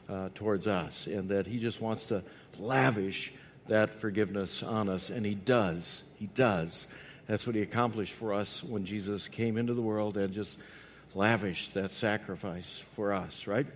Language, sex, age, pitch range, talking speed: English, male, 60-79, 110-140 Hz, 170 wpm